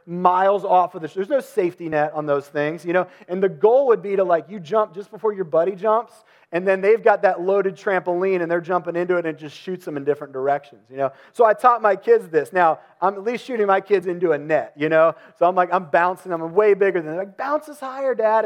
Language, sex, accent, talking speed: English, male, American, 265 wpm